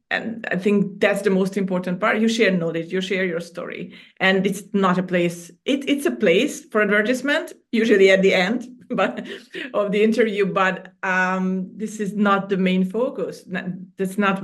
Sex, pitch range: female, 185-225 Hz